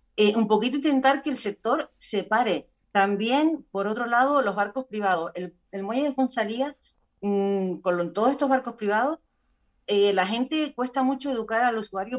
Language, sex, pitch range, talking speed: Spanish, female, 195-255 Hz, 175 wpm